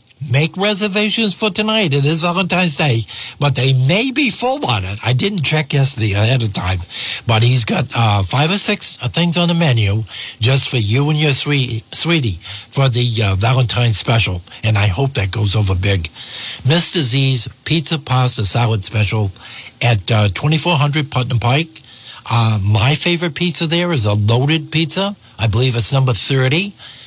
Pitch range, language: 110-155 Hz, English